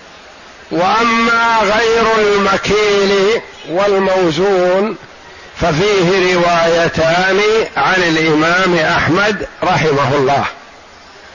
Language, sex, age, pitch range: Arabic, male, 60-79, 185-215 Hz